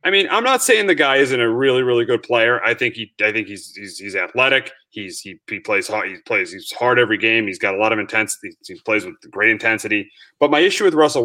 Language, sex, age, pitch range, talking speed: English, male, 30-49, 135-180 Hz, 260 wpm